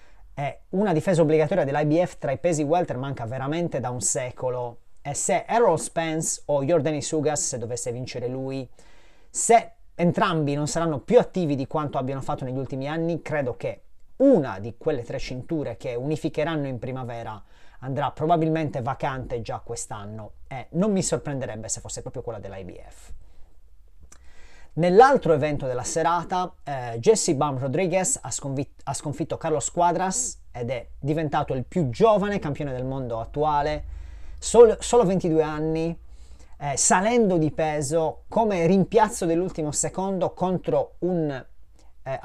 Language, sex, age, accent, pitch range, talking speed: Italian, male, 30-49, native, 130-170 Hz, 140 wpm